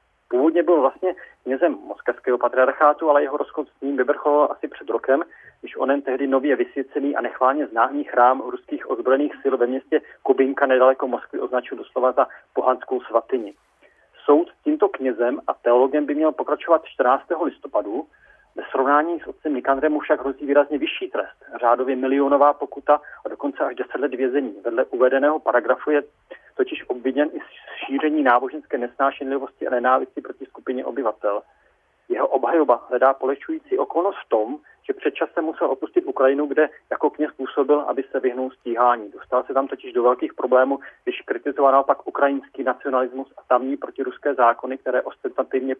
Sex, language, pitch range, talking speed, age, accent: male, Czech, 130-150 Hz, 155 wpm, 40-59, native